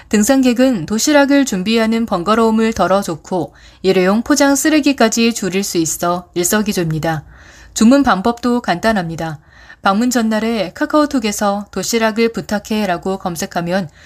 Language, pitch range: Korean, 180-235 Hz